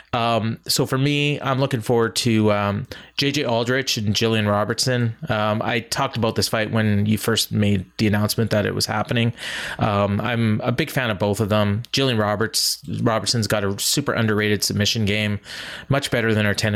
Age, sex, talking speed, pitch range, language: 30-49, male, 190 wpm, 105-125 Hz, English